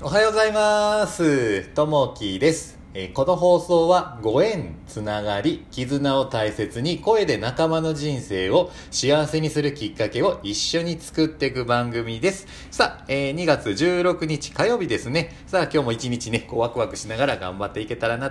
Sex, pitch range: male, 95-150 Hz